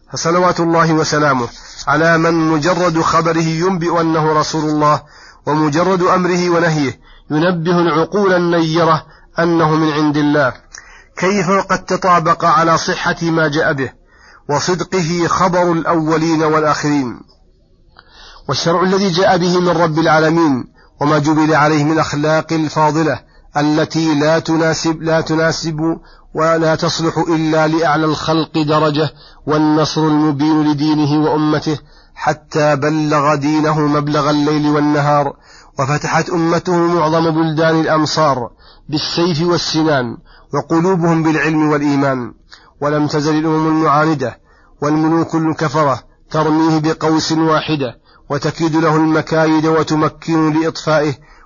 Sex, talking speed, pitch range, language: male, 105 wpm, 150-165 Hz, Arabic